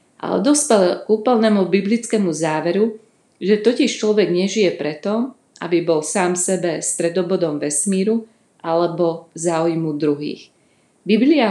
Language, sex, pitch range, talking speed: Slovak, female, 170-210 Hz, 105 wpm